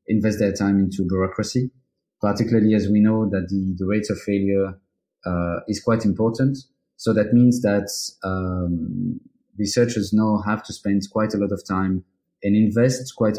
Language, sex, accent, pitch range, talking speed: English, male, French, 95-110 Hz, 165 wpm